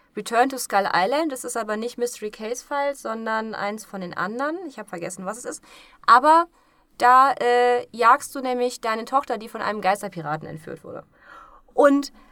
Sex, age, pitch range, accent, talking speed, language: female, 20-39, 235-300 Hz, German, 180 wpm, German